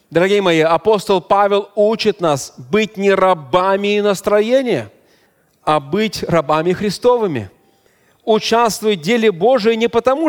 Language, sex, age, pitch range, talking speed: Russian, male, 30-49, 170-235 Hz, 115 wpm